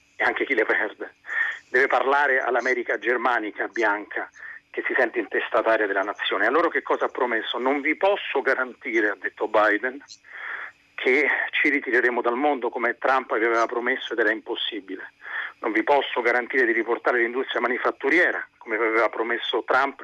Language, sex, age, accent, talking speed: Italian, male, 40-59, native, 160 wpm